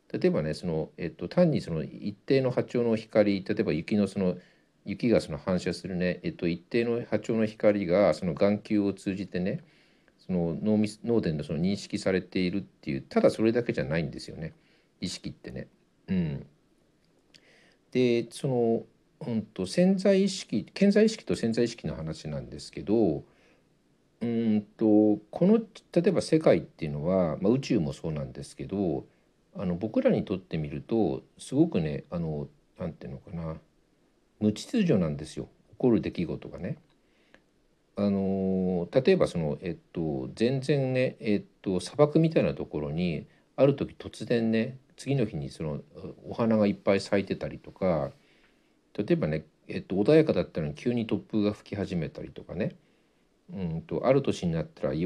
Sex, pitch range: male, 95-125 Hz